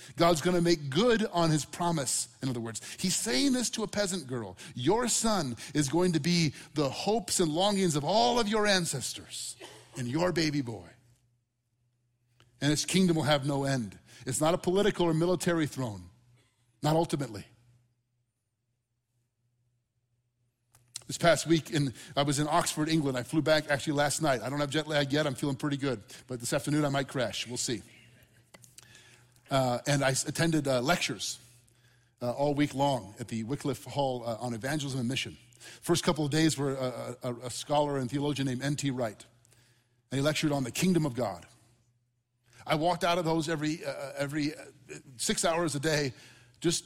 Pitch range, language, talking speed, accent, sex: 120-155 Hz, English, 175 wpm, American, male